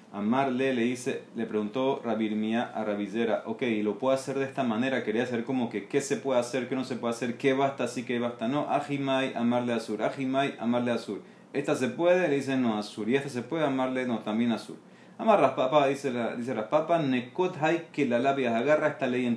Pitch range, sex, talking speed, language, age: 110-140 Hz, male, 240 wpm, Spanish, 30-49